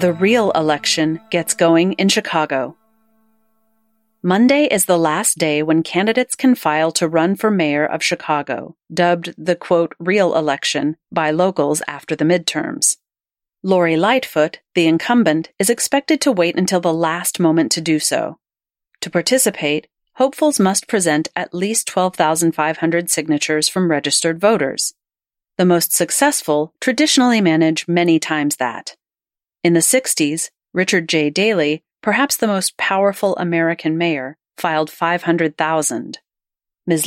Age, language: 40-59, English